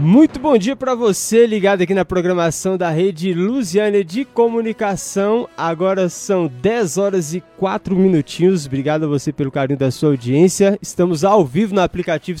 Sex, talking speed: male, 165 wpm